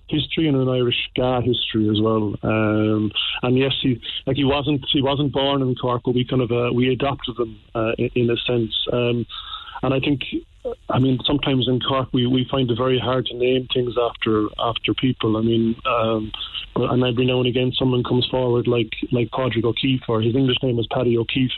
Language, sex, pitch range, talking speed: English, male, 115-130 Hz, 210 wpm